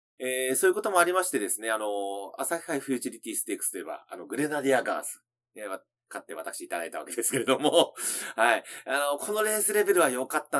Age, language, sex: 30-49, Japanese, male